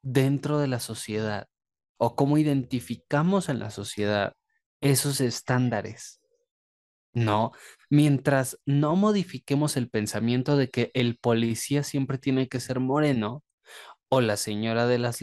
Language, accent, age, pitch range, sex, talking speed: Spanish, Mexican, 20-39, 115-150 Hz, male, 125 wpm